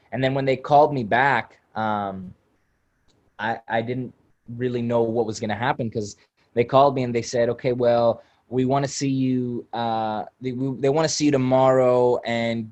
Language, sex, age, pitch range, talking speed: English, male, 20-39, 110-130 Hz, 195 wpm